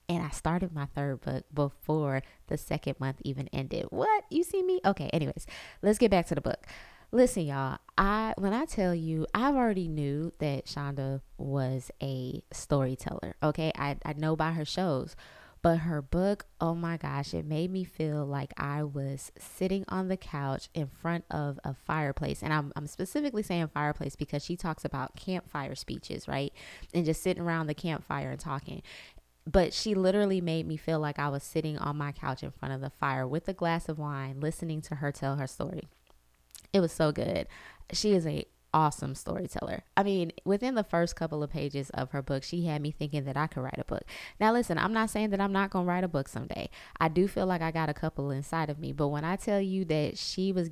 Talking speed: 215 wpm